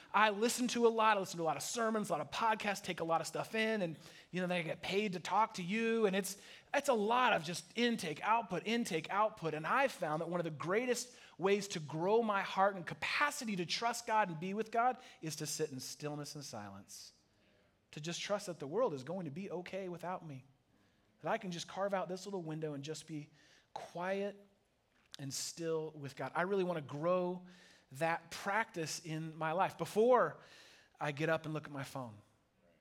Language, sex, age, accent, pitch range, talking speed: English, male, 30-49, American, 155-210 Hz, 220 wpm